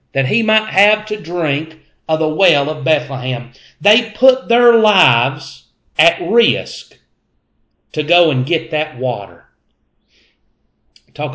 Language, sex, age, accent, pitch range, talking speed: English, male, 40-59, American, 120-160 Hz, 125 wpm